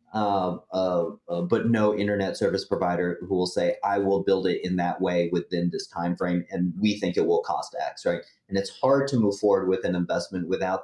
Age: 30-49